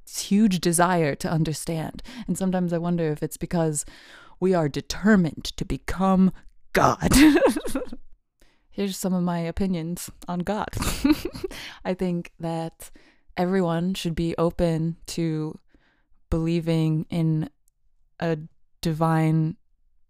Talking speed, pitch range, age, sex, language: 105 wpm, 155-180 Hz, 20-39, female, English